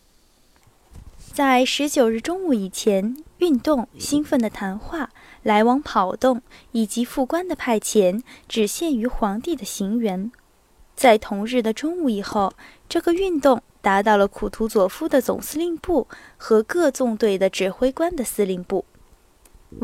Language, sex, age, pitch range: Chinese, female, 10-29, 210-295 Hz